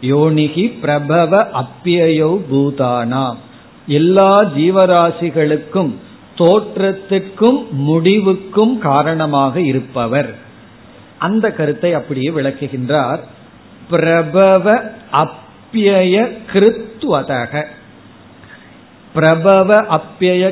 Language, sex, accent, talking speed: Tamil, male, native, 55 wpm